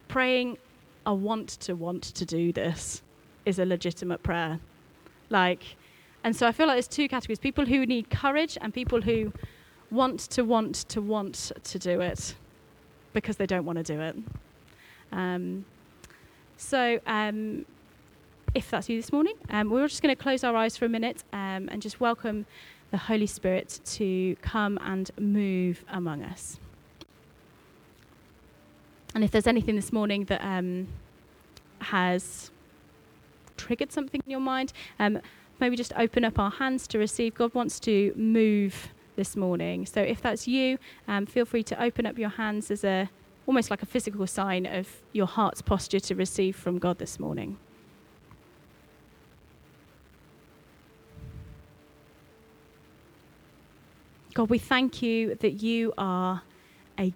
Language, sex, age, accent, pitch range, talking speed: English, female, 10-29, British, 190-235 Hz, 150 wpm